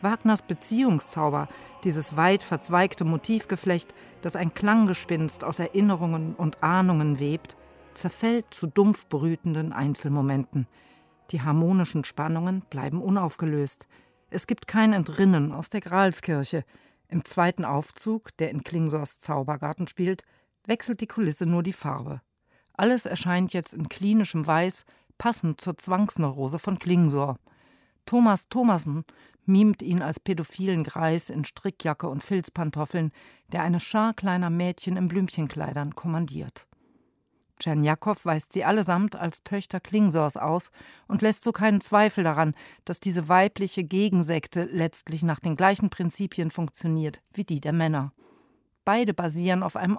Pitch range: 155-195 Hz